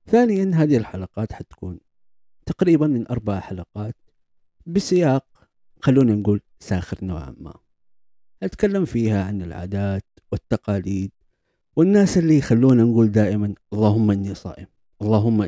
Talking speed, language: 110 wpm, Arabic